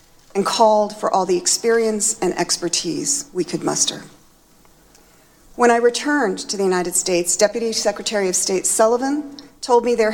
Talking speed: 155 wpm